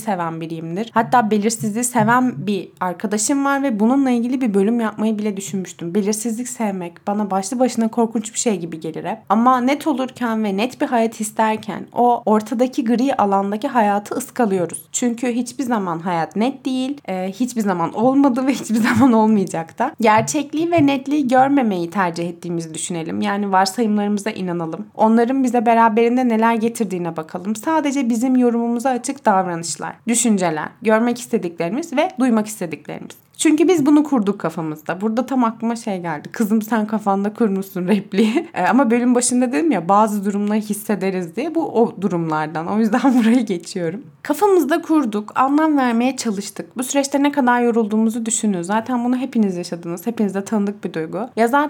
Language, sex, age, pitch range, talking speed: Turkish, female, 20-39, 195-255 Hz, 155 wpm